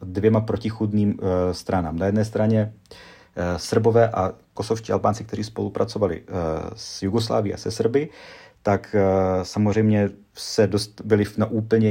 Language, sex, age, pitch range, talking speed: Czech, male, 40-59, 90-105 Hz, 120 wpm